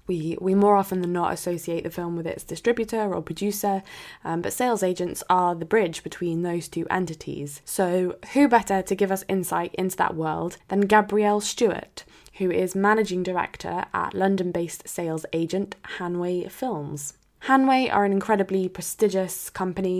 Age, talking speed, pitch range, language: 10-29, 160 wpm, 170-200 Hz, English